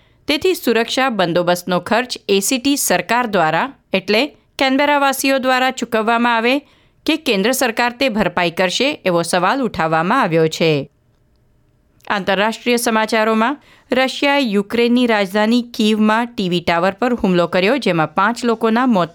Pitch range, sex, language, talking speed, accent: 180-245 Hz, female, Gujarati, 120 wpm, native